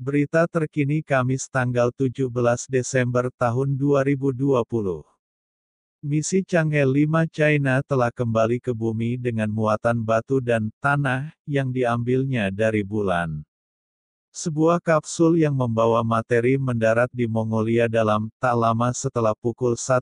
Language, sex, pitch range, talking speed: Indonesian, male, 115-140 Hz, 110 wpm